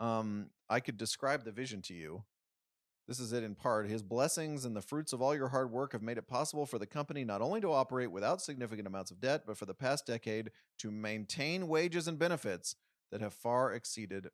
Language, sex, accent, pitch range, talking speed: English, male, American, 110-140 Hz, 220 wpm